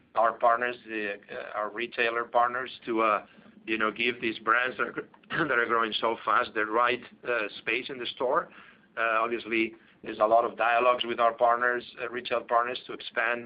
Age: 50-69